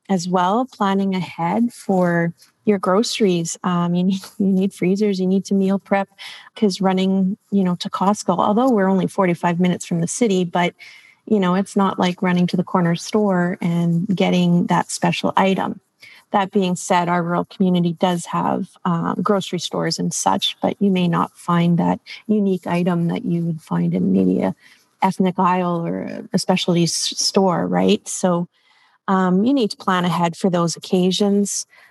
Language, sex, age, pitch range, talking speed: English, female, 30-49, 180-210 Hz, 175 wpm